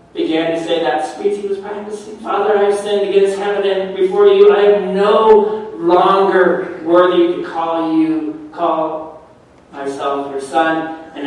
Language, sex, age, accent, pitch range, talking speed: English, male, 40-59, American, 185-270 Hz, 160 wpm